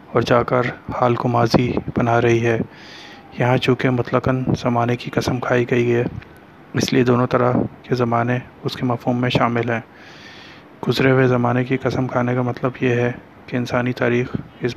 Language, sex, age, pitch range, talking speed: Urdu, male, 30-49, 120-125 Hz, 180 wpm